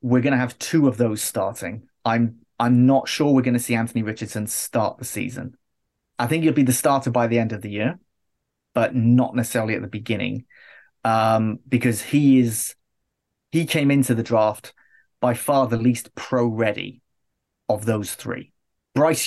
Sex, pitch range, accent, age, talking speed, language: male, 115-130 Hz, British, 30-49, 180 wpm, English